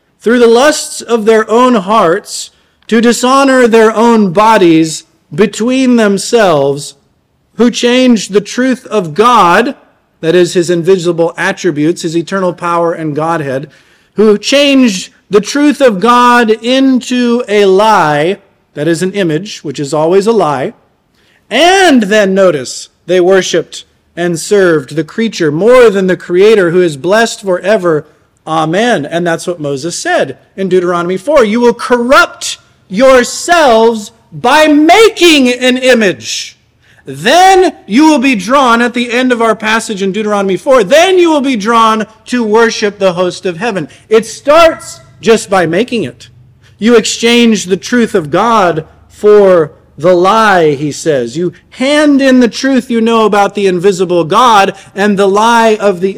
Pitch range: 175-240 Hz